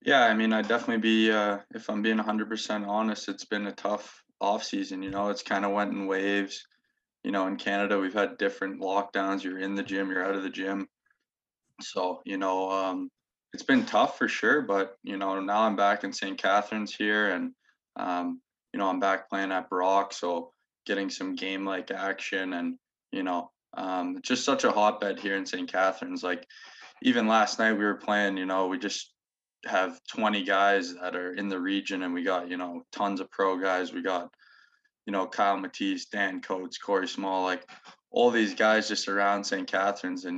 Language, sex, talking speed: English, male, 200 wpm